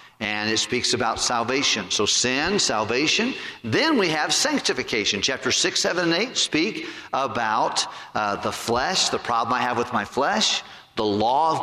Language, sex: English, male